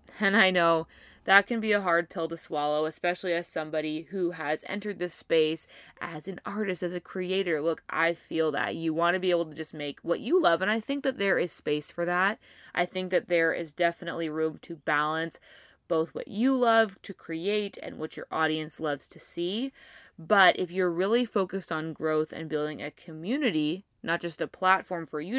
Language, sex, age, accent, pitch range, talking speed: English, female, 20-39, American, 160-205 Hz, 210 wpm